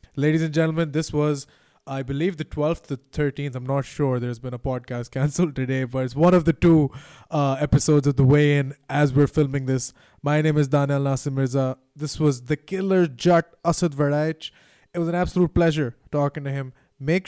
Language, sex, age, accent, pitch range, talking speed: English, male, 20-39, Indian, 135-165 Hz, 200 wpm